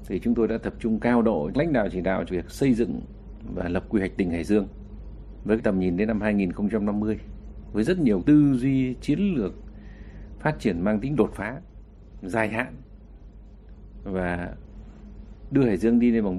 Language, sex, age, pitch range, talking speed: Vietnamese, male, 60-79, 95-110 Hz, 185 wpm